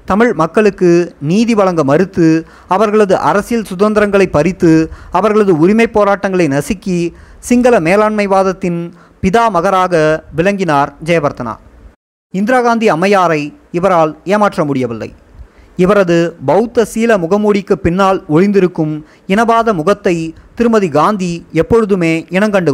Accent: native